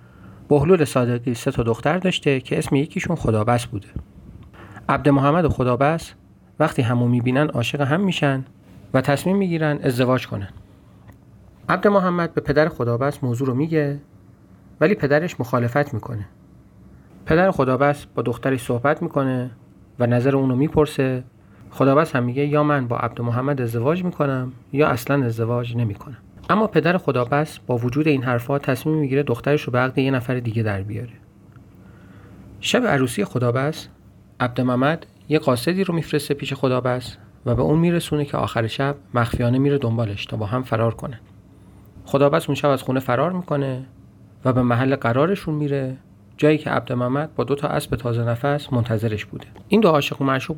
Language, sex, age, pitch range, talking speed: Persian, male, 40-59, 115-145 Hz, 160 wpm